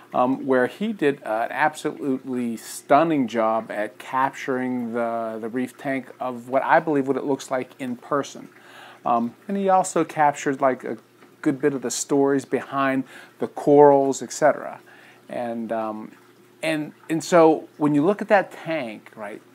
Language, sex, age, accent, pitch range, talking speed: English, male, 40-59, American, 130-155 Hz, 165 wpm